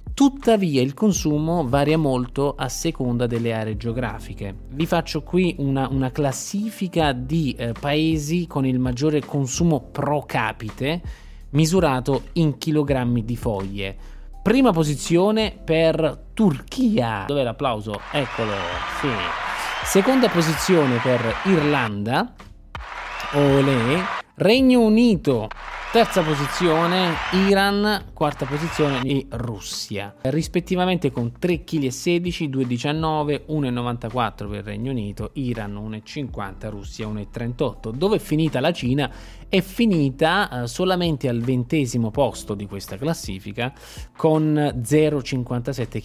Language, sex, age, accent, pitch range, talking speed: Italian, male, 20-39, native, 115-160 Hz, 105 wpm